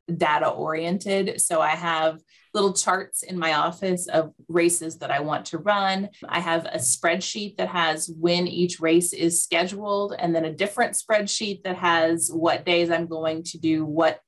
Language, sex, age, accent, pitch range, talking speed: English, female, 30-49, American, 160-185 Hz, 175 wpm